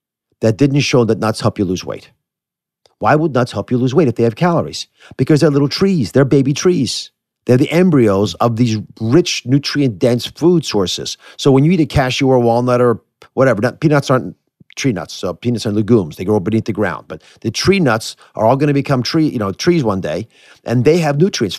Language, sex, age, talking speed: English, male, 40-59, 220 wpm